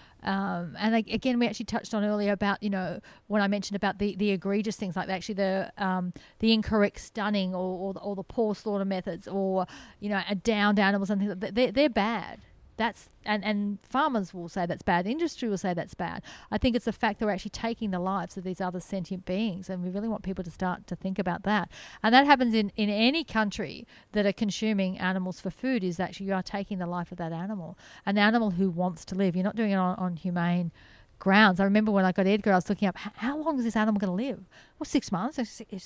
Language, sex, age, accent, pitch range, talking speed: English, female, 40-59, Australian, 190-235 Hz, 245 wpm